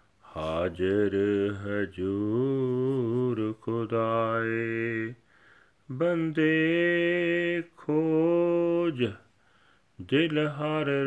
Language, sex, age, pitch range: Punjabi, male, 40-59, 115-150 Hz